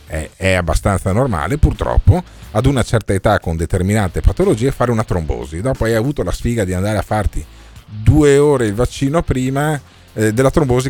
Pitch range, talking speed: 90-125 Hz, 170 wpm